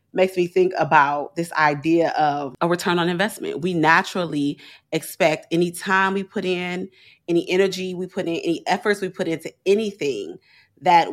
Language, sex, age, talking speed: English, female, 30-49, 165 wpm